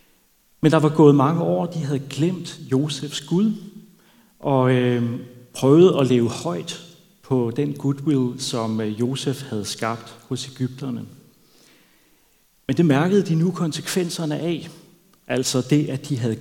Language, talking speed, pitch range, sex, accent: Danish, 145 wpm, 115-155 Hz, male, native